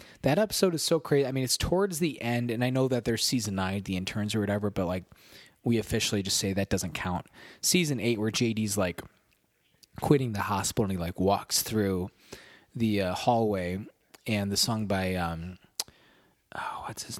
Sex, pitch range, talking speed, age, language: male, 95-120 Hz, 190 wpm, 20-39, English